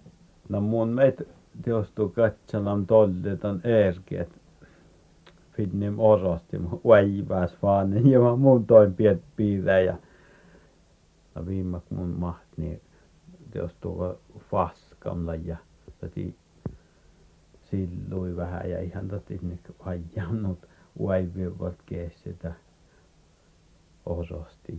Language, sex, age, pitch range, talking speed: Czech, male, 60-79, 85-105 Hz, 105 wpm